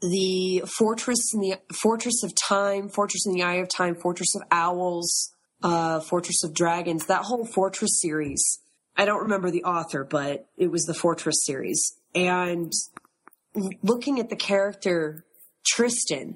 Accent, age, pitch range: American, 30-49, 165-205 Hz